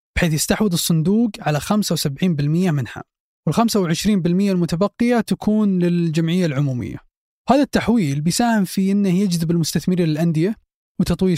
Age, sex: 20-39, male